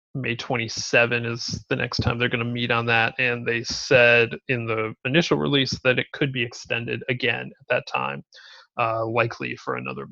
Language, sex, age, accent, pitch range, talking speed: English, male, 30-49, American, 115-130 Hz, 190 wpm